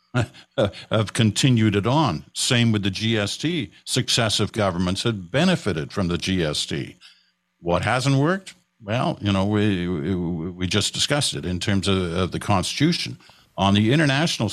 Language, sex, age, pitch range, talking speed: English, male, 60-79, 90-120 Hz, 150 wpm